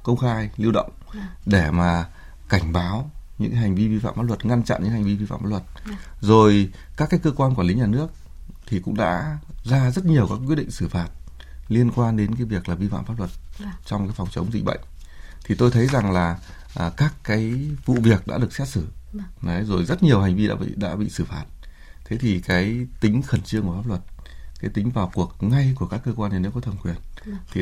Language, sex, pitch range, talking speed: Vietnamese, male, 90-115 Hz, 235 wpm